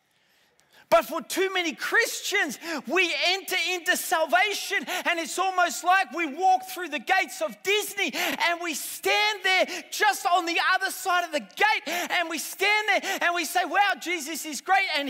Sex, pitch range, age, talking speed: male, 310-370 Hz, 30-49, 175 wpm